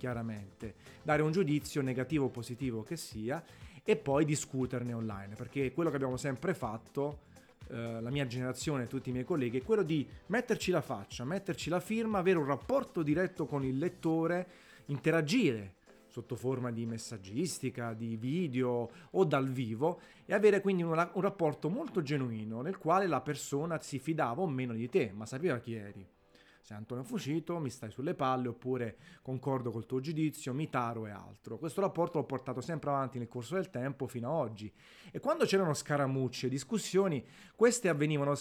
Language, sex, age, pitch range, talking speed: Italian, male, 30-49, 125-165 Hz, 175 wpm